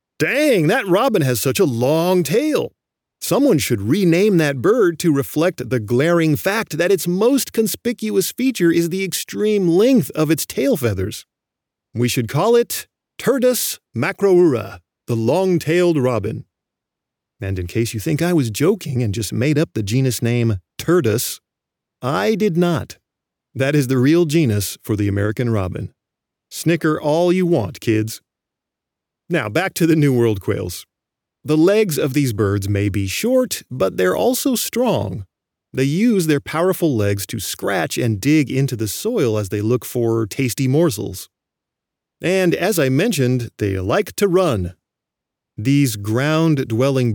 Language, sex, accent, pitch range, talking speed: English, male, American, 110-170 Hz, 155 wpm